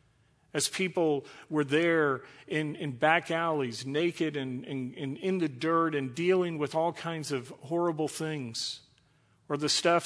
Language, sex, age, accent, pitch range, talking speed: English, male, 50-69, American, 135-155 Hz, 150 wpm